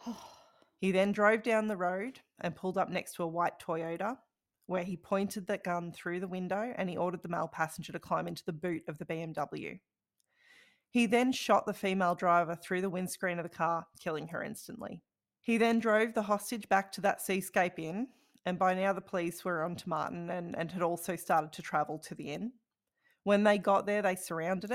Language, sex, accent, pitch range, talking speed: English, female, Australian, 170-205 Hz, 210 wpm